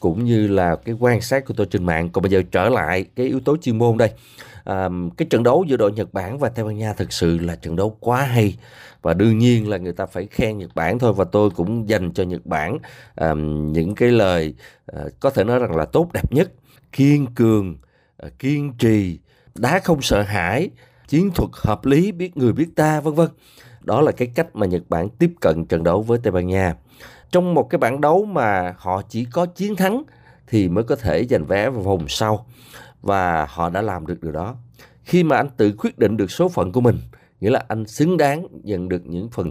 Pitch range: 90-130 Hz